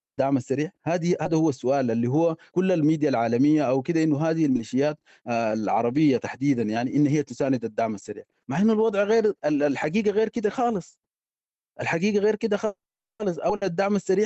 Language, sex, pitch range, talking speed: English, male, 135-190 Hz, 165 wpm